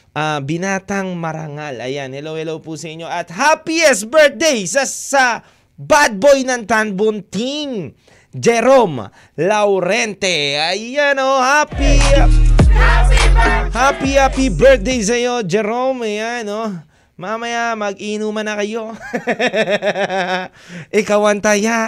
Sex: male